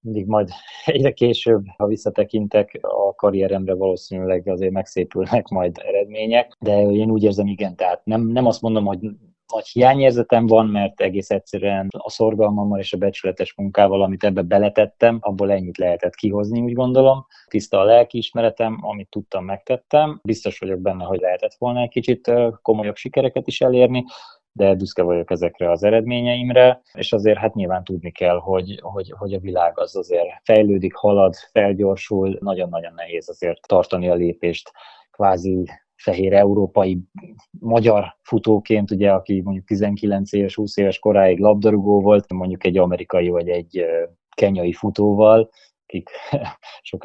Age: 20-39